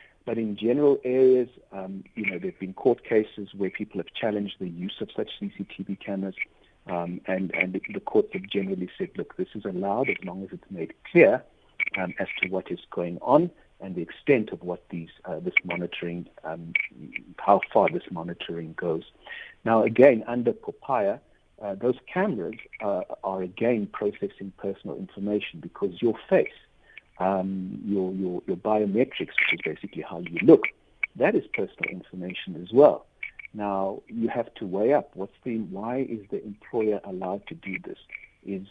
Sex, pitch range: male, 95-110 Hz